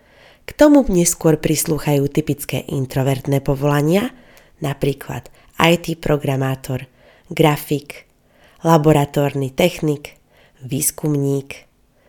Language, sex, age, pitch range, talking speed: Slovak, female, 20-39, 140-185 Hz, 70 wpm